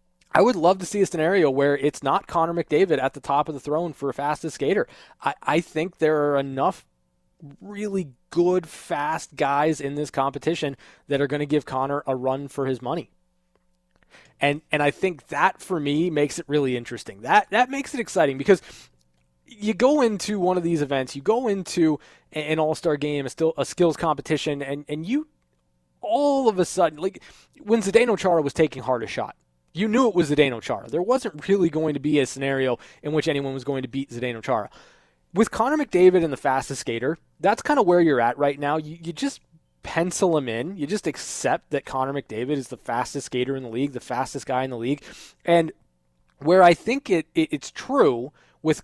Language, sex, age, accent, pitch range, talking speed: English, male, 20-39, American, 135-175 Hz, 210 wpm